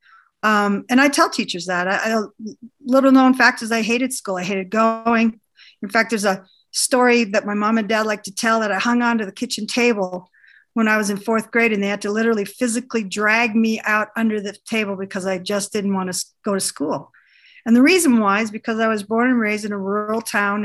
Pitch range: 200-235 Hz